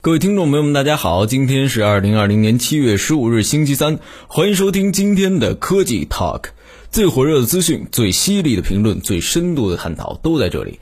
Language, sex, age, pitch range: Chinese, male, 20-39, 105-160 Hz